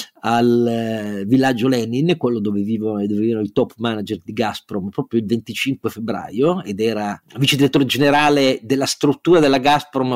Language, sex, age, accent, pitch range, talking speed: Italian, male, 40-59, native, 110-145 Hz, 155 wpm